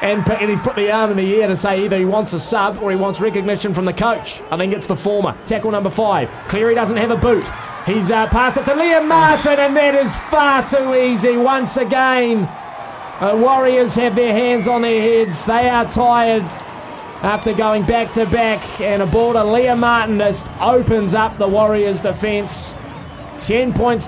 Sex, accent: male, Australian